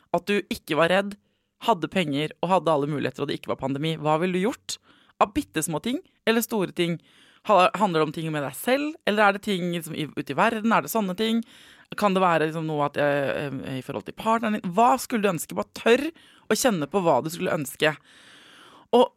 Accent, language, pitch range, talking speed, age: Swedish, English, 155-230 Hz, 215 wpm, 20-39